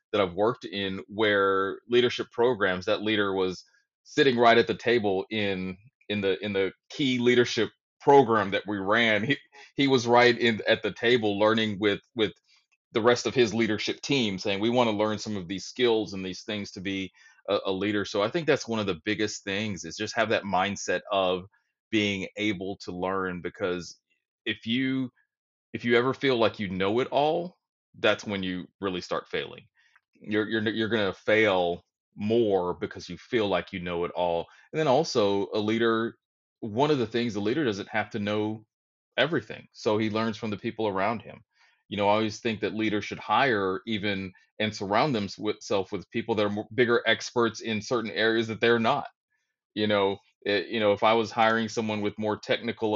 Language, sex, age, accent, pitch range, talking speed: English, male, 30-49, American, 95-115 Hz, 195 wpm